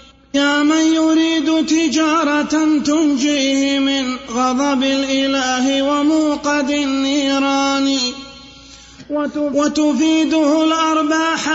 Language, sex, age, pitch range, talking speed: Arabic, male, 30-49, 270-300 Hz, 60 wpm